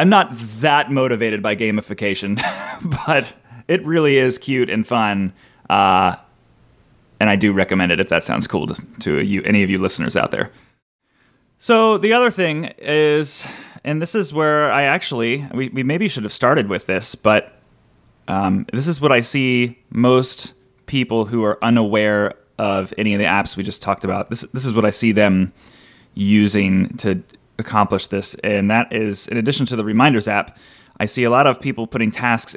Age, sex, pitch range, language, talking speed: 30-49, male, 105-140 Hz, English, 185 wpm